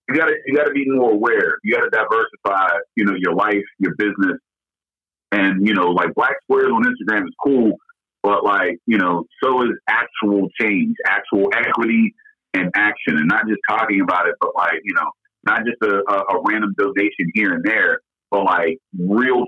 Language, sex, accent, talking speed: English, male, American, 190 wpm